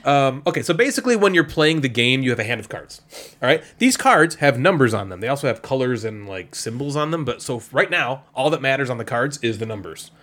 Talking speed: 265 wpm